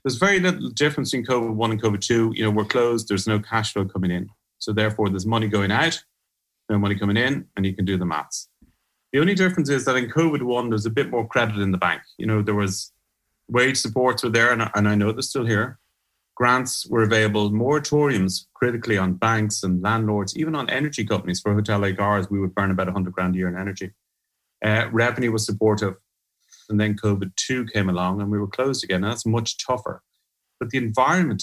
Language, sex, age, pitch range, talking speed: English, male, 30-49, 100-120 Hz, 215 wpm